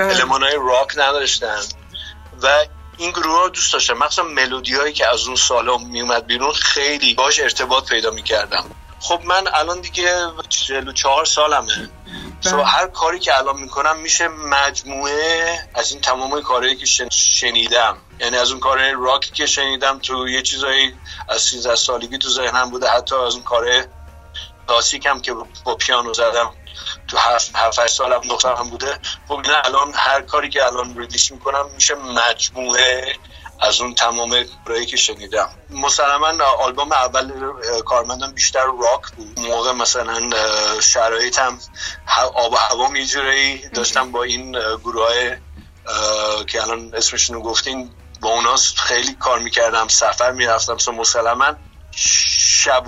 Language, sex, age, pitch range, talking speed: Persian, male, 50-69, 115-135 Hz, 140 wpm